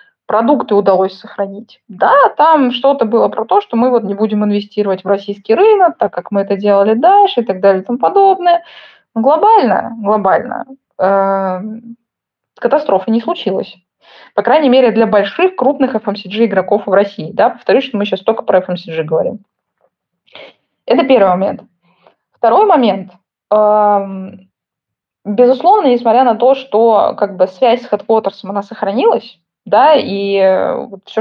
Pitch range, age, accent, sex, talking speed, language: 195-250 Hz, 20-39, native, female, 145 wpm, Russian